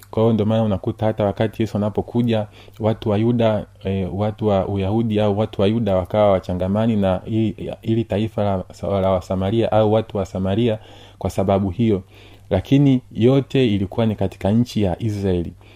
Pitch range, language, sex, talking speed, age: 95-115 Hz, Swahili, male, 170 wpm, 30-49